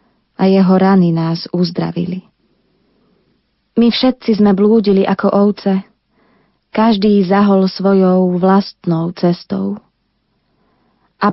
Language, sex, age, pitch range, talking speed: Slovak, female, 20-39, 185-215 Hz, 90 wpm